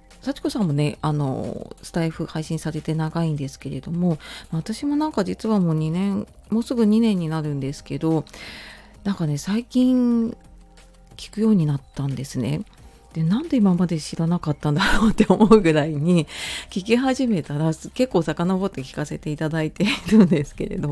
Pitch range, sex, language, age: 150-195 Hz, female, Japanese, 40-59